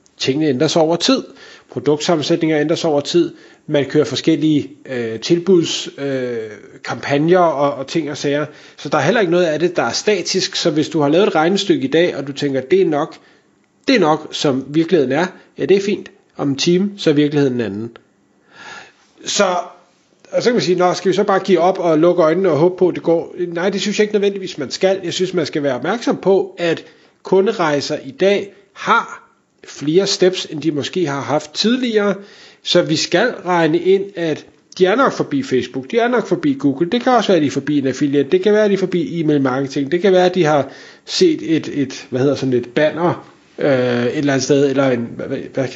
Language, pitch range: Danish, 140-185 Hz